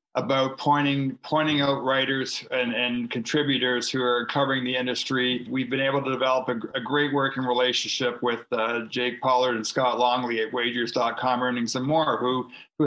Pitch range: 125-135 Hz